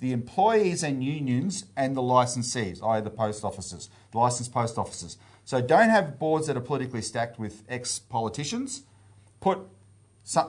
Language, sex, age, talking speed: English, male, 40-59, 155 wpm